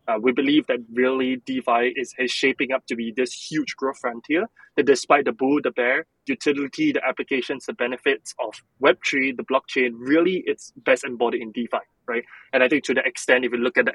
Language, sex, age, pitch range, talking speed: English, male, 20-39, 125-150 Hz, 210 wpm